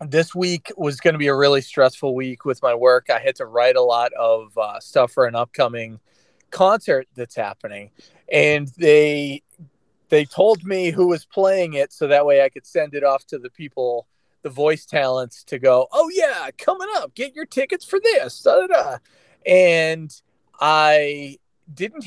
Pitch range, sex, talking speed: 130-180 Hz, male, 185 wpm